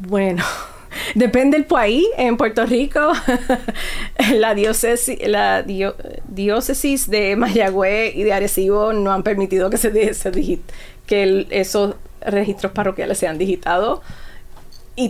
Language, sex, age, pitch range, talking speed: English, female, 30-49, 180-215 Hz, 125 wpm